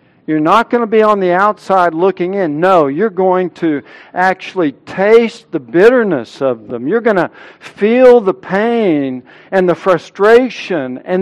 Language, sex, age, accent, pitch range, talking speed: English, male, 60-79, American, 145-220 Hz, 160 wpm